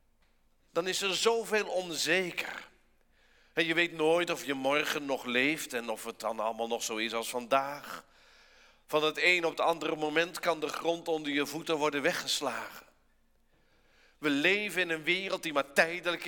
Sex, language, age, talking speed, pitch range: male, Dutch, 50-69, 175 wpm, 130-190 Hz